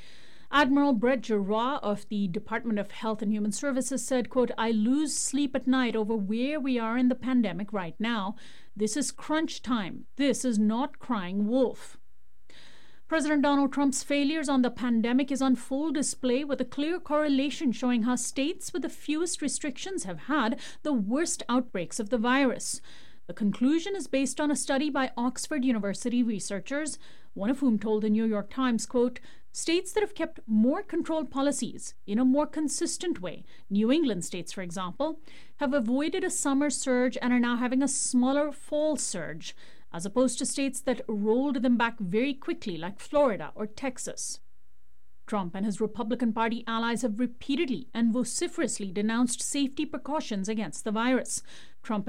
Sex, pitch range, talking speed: female, 220-280 Hz, 170 wpm